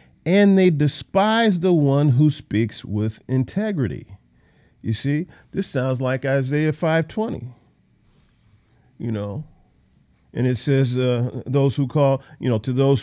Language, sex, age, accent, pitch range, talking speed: English, male, 50-69, American, 115-145 Hz, 135 wpm